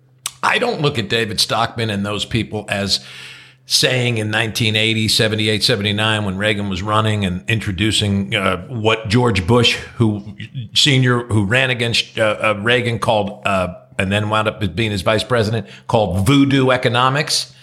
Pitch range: 100-130 Hz